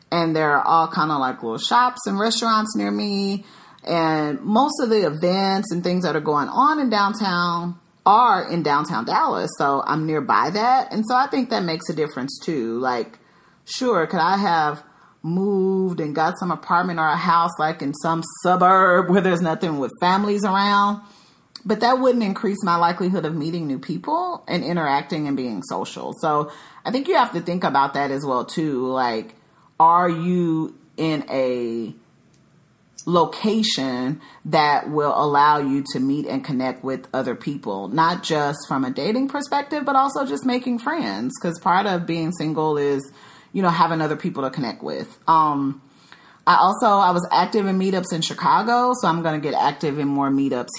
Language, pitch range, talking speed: English, 145-200 Hz, 180 wpm